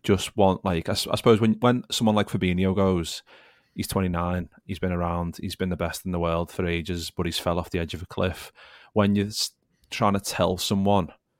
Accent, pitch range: British, 90-100 Hz